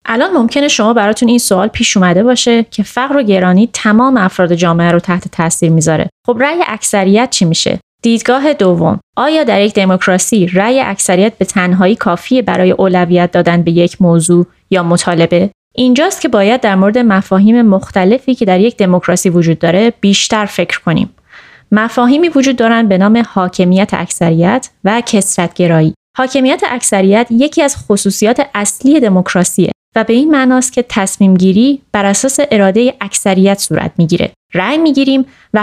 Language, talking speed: Persian, 155 wpm